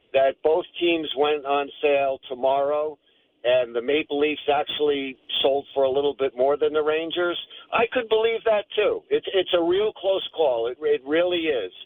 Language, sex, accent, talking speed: English, male, American, 175 wpm